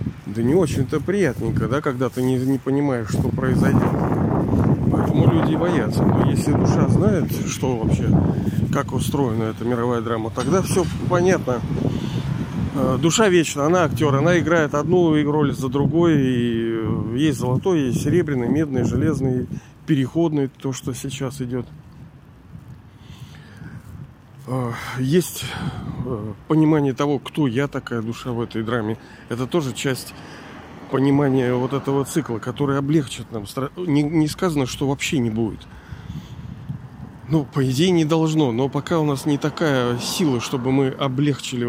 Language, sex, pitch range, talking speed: Russian, male, 125-150 Hz, 130 wpm